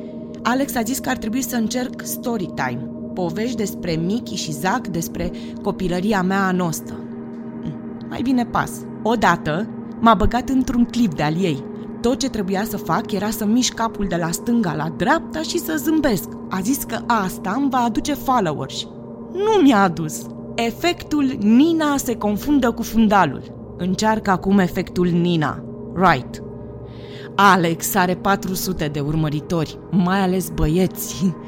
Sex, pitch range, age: female, 170-235 Hz, 20-39